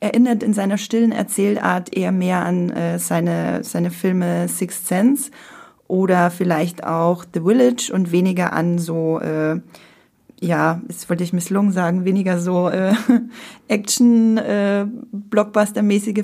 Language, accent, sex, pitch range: German, German, female, 180-220 Hz